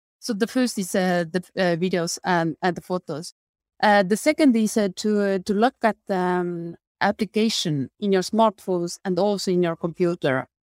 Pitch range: 175-215 Hz